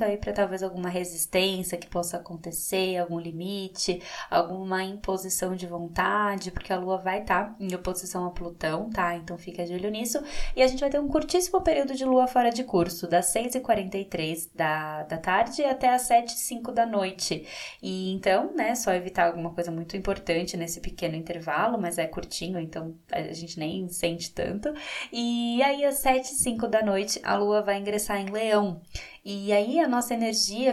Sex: female